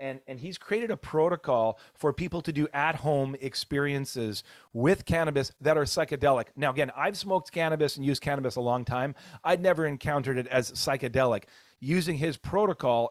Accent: American